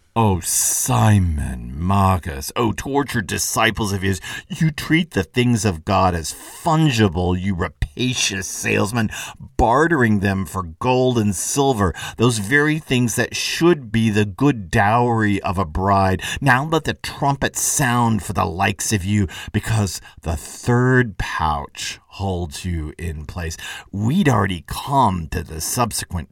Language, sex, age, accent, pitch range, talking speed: English, male, 50-69, American, 90-115 Hz, 140 wpm